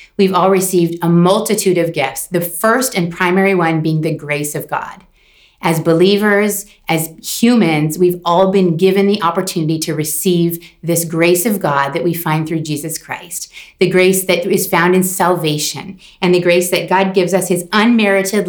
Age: 30-49